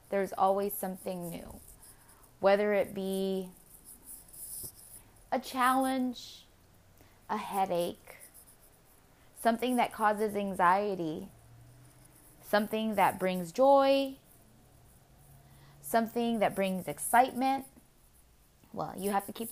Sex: female